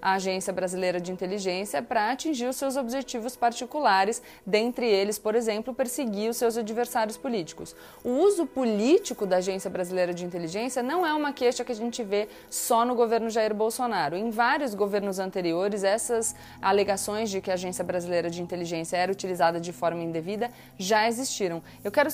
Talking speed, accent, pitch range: 170 wpm, Brazilian, 180-235 Hz